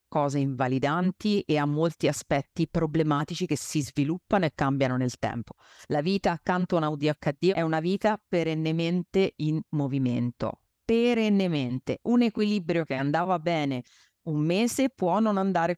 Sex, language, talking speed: female, Italian, 140 wpm